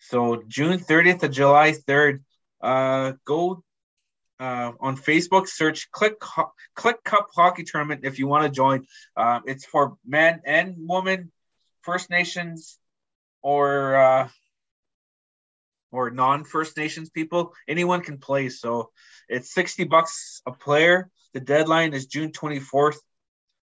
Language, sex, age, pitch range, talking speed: English, male, 20-39, 120-155 Hz, 130 wpm